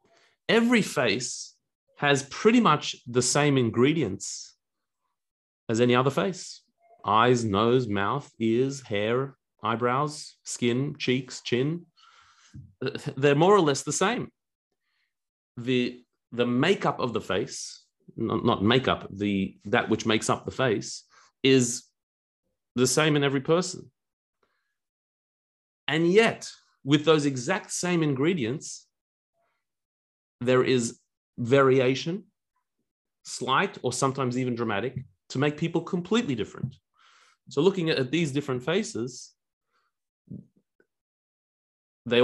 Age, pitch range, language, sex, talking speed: 30-49, 125-175 Hz, English, male, 110 wpm